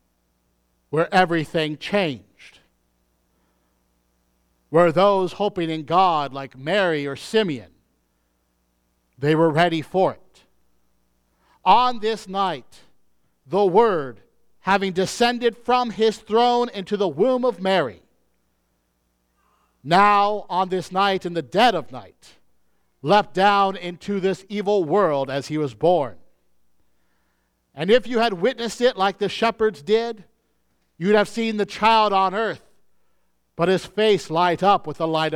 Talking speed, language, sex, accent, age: 130 wpm, English, male, American, 50-69